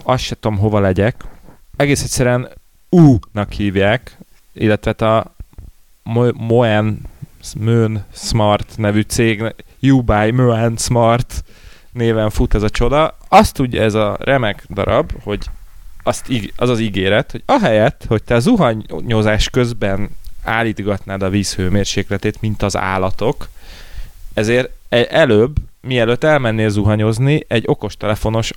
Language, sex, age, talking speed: Hungarian, male, 30-49, 120 wpm